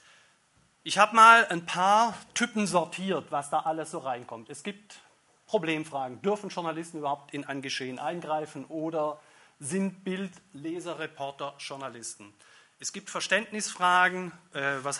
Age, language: 40-59, German